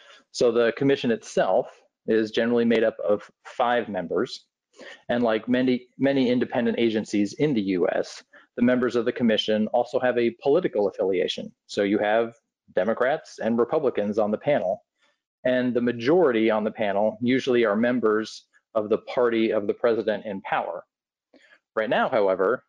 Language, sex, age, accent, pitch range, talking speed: English, male, 40-59, American, 105-125 Hz, 155 wpm